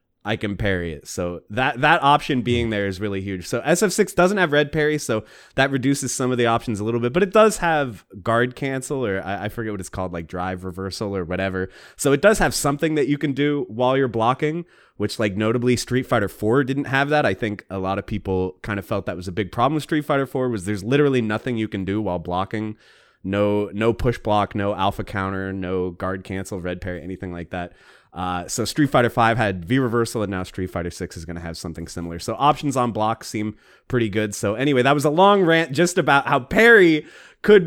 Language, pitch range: English, 100-145 Hz